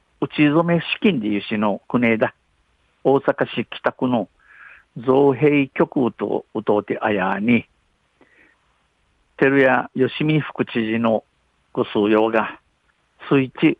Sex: male